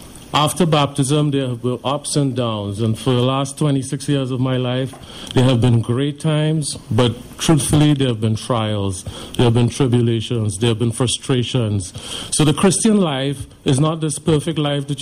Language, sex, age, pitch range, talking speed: English, male, 50-69, 120-150 Hz, 185 wpm